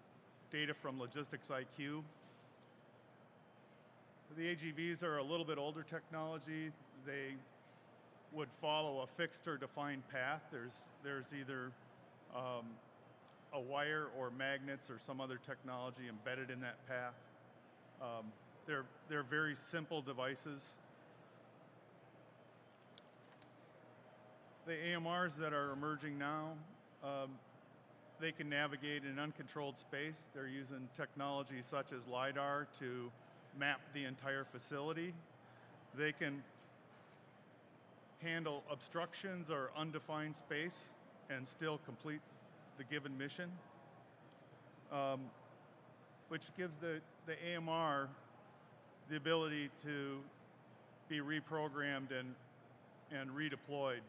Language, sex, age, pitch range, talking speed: English, male, 40-59, 135-155 Hz, 100 wpm